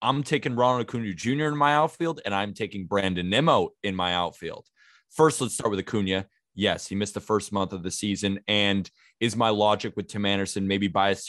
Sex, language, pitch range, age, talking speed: male, English, 100-130 Hz, 20-39, 205 wpm